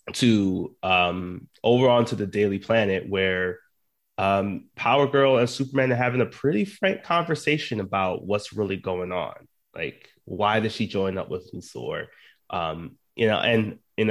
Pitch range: 95-120 Hz